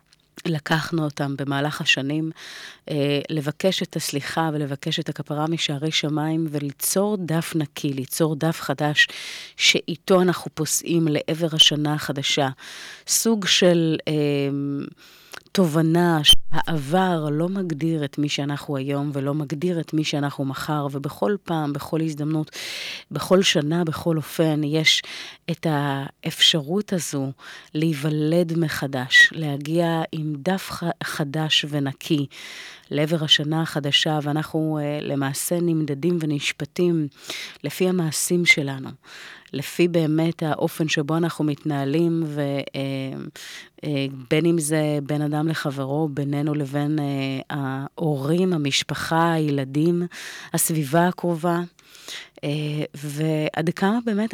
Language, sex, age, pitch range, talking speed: Hebrew, female, 30-49, 145-165 Hz, 105 wpm